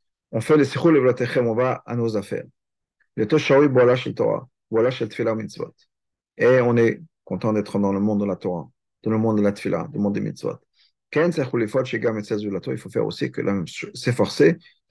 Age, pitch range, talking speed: 40-59, 115-145 Hz, 215 wpm